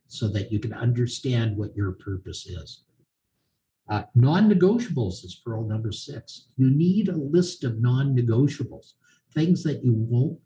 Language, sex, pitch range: English, male, 105-135 Hz